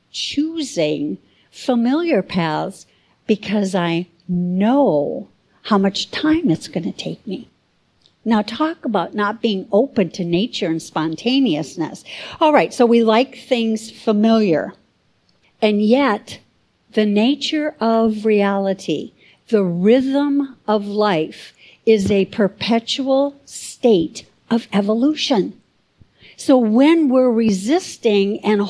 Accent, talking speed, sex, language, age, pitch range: American, 110 wpm, female, English, 60-79, 205-270 Hz